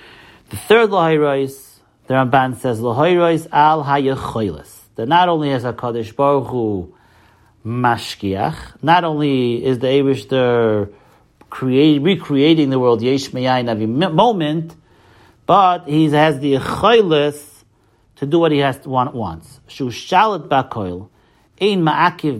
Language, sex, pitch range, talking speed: English, male, 115-155 Hz, 125 wpm